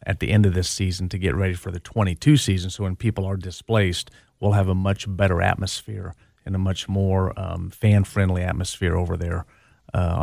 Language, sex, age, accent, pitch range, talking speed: English, male, 40-59, American, 95-110 Hz, 200 wpm